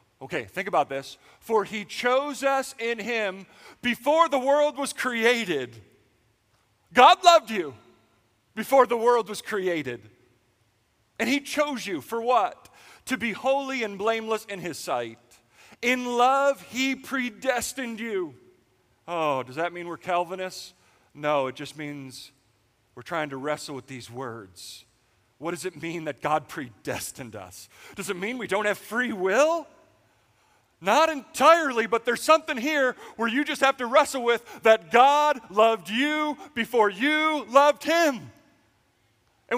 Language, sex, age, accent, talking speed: English, male, 40-59, American, 145 wpm